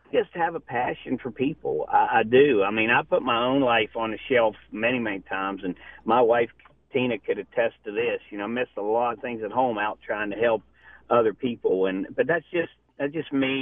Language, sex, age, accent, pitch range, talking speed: English, male, 50-69, American, 105-140 Hz, 235 wpm